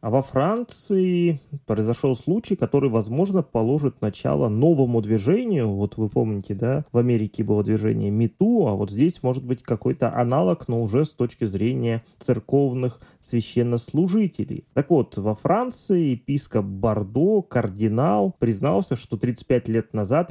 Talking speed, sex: 135 wpm, male